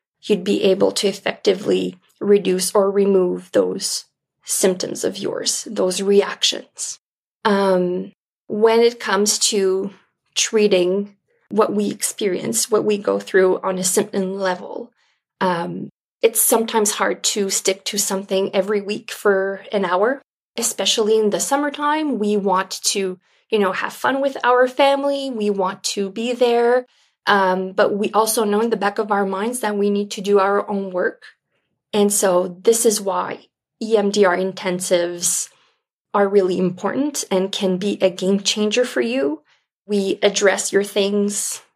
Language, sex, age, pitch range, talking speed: English, female, 20-39, 190-220 Hz, 150 wpm